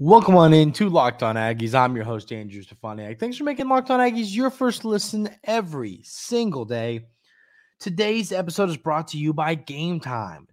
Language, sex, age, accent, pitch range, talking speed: English, male, 20-39, American, 125-190 Hz, 190 wpm